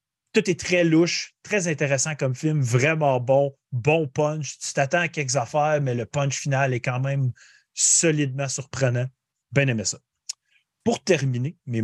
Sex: male